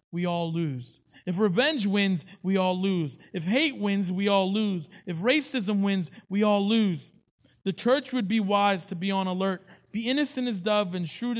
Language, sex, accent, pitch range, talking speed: English, male, American, 140-200 Hz, 190 wpm